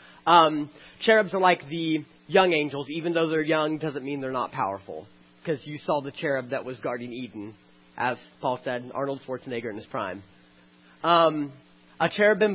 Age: 30-49